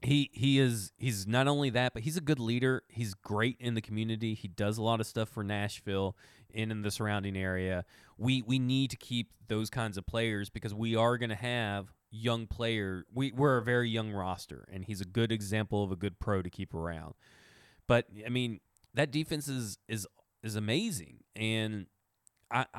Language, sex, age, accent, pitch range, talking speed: English, male, 30-49, American, 100-135 Hz, 195 wpm